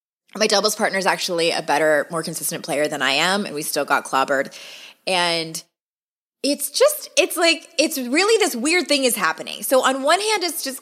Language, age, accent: English, 20-39, American